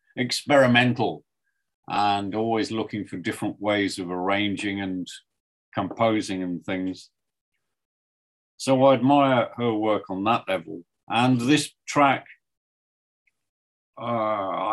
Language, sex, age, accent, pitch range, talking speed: English, male, 50-69, British, 100-120 Hz, 100 wpm